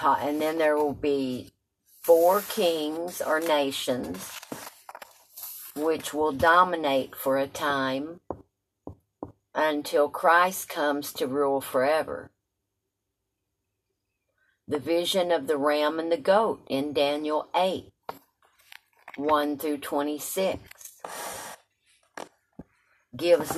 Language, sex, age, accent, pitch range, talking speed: English, female, 50-69, American, 140-180 Hz, 90 wpm